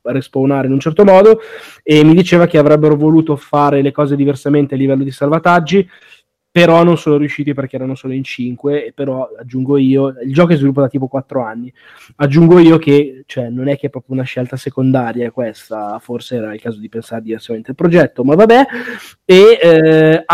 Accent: native